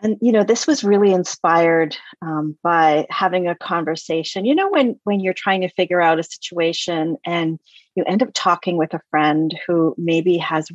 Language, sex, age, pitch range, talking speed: English, female, 40-59, 170-230 Hz, 190 wpm